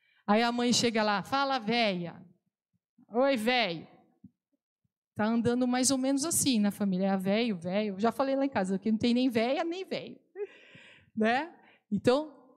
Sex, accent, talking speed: female, Brazilian, 165 wpm